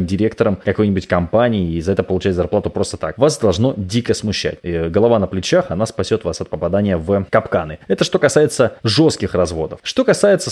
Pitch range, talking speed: 95-145 Hz, 175 wpm